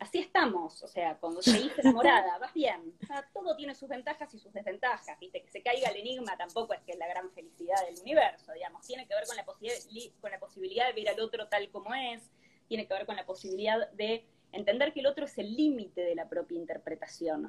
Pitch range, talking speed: 185-285 Hz, 235 wpm